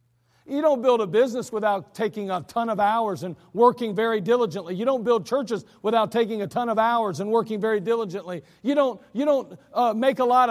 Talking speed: 210 wpm